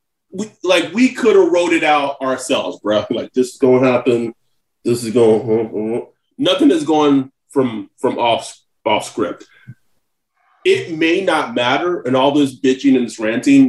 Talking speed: 175 wpm